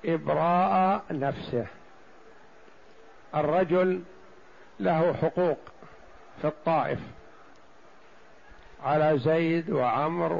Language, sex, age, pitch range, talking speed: Arabic, male, 50-69, 165-200 Hz, 60 wpm